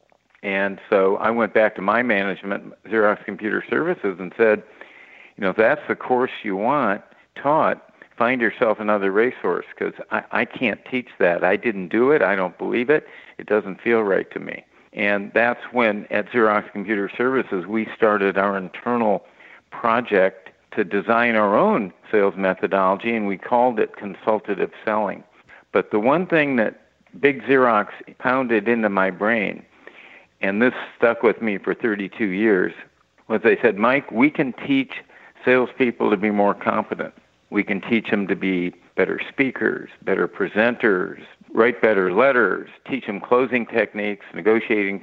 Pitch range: 100-125 Hz